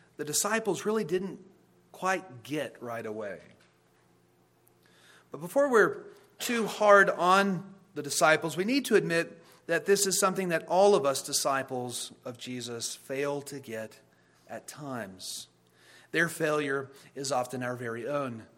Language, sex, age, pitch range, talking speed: English, male, 40-59, 135-200 Hz, 140 wpm